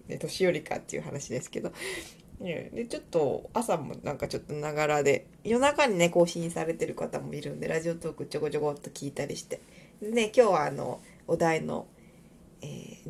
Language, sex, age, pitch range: Japanese, female, 20-39, 165-260 Hz